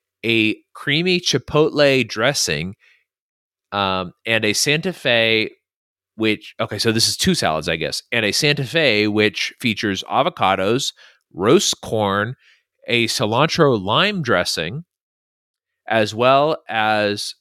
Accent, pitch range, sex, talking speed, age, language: American, 100-130 Hz, male, 115 wpm, 30-49, English